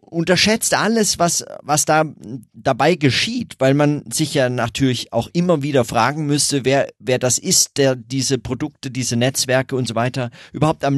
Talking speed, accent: 170 wpm, German